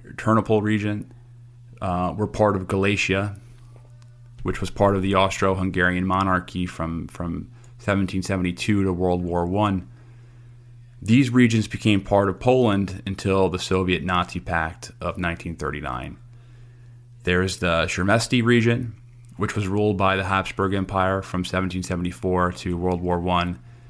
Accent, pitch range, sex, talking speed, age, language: American, 90-120 Hz, male, 145 wpm, 30-49, English